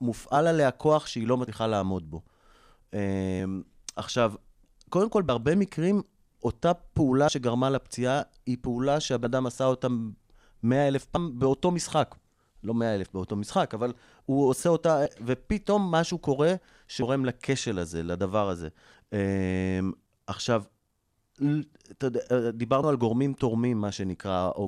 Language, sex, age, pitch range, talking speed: Hebrew, male, 30-49, 105-135 Hz, 130 wpm